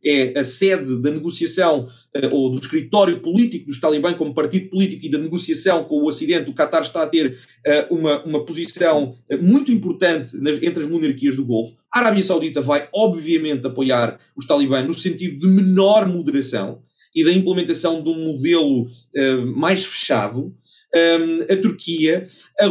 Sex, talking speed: male, 165 wpm